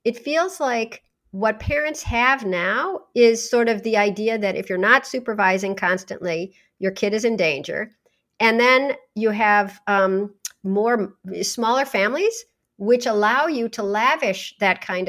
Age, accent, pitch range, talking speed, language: 50-69, American, 195-235 Hz, 150 wpm, English